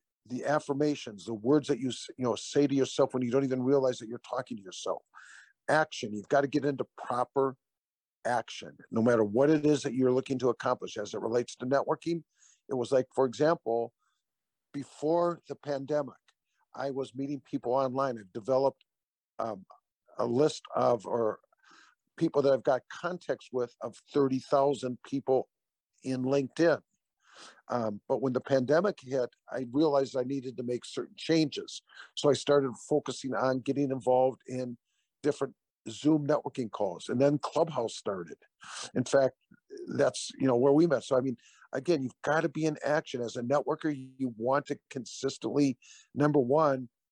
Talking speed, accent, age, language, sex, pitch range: 170 wpm, American, 50-69, English, male, 130-150 Hz